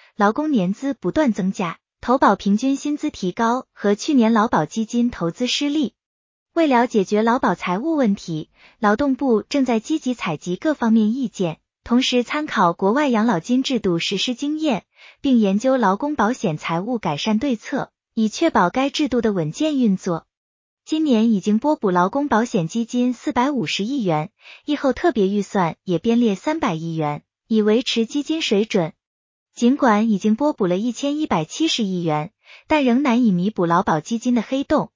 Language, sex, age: Chinese, female, 20-39